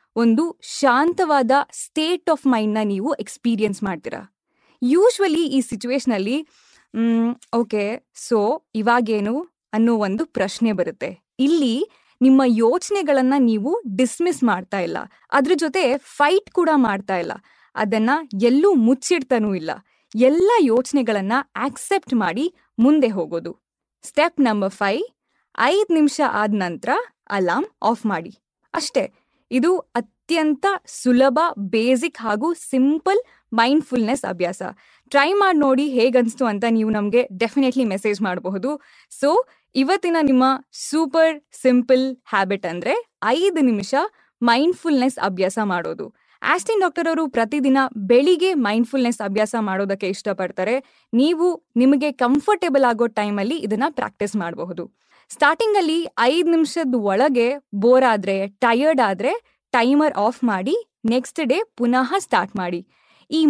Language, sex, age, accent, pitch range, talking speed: Kannada, female, 20-39, native, 220-310 Hz, 115 wpm